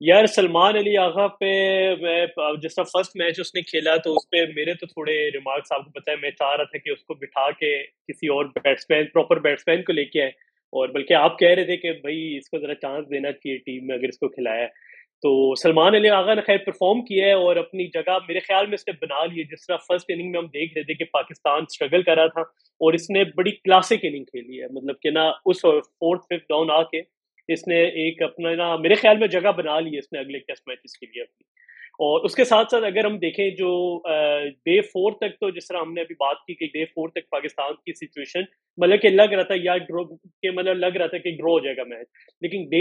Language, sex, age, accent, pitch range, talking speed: English, male, 30-49, Indian, 160-200 Hz, 160 wpm